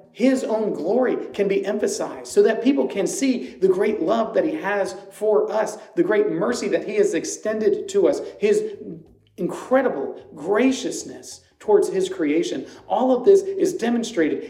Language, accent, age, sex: English, American, 40-59, male